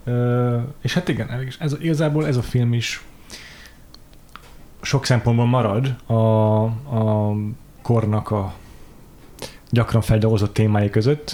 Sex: male